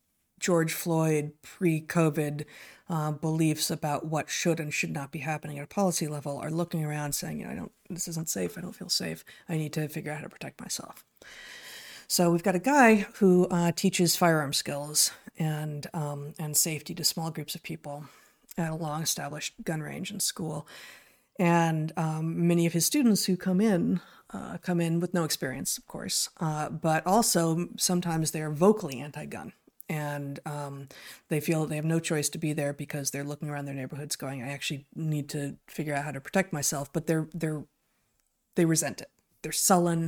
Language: English